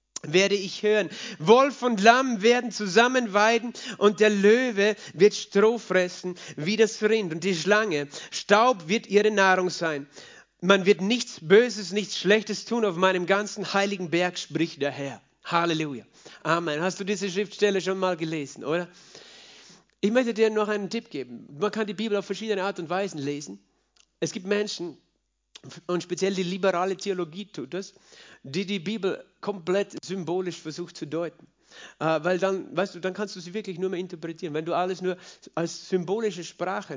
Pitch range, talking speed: 170-205 Hz, 170 wpm